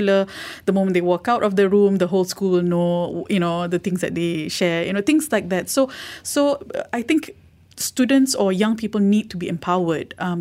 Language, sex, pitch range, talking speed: English, female, 175-220 Hz, 220 wpm